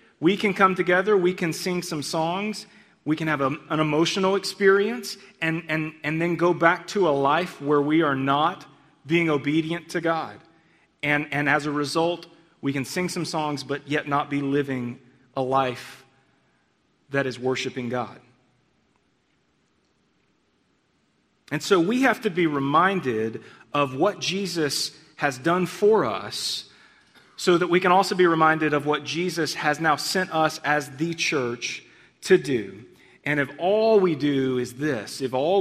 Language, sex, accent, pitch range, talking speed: English, male, American, 135-170 Hz, 160 wpm